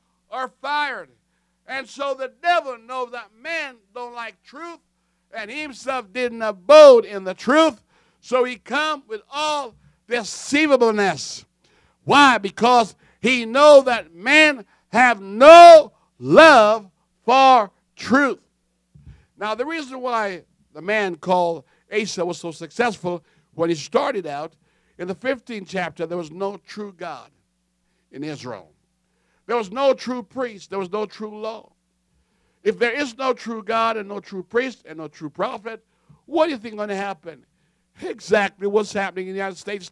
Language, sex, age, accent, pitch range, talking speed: English, male, 60-79, American, 180-255 Hz, 150 wpm